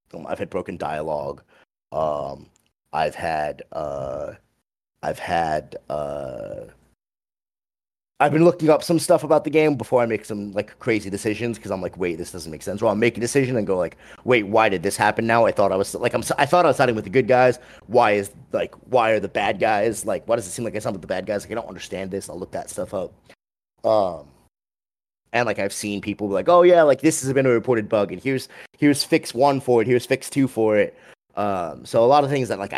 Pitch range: 110-155 Hz